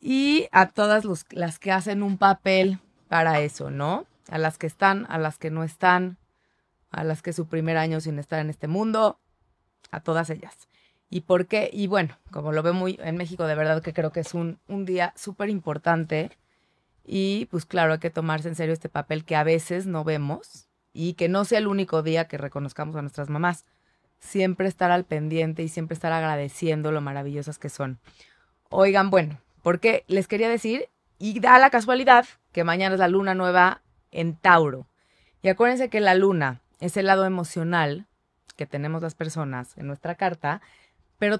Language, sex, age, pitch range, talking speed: Spanish, female, 30-49, 155-195 Hz, 190 wpm